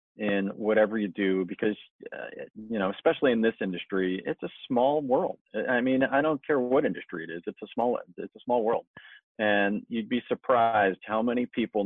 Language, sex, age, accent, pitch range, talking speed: English, male, 40-59, American, 95-115 Hz, 195 wpm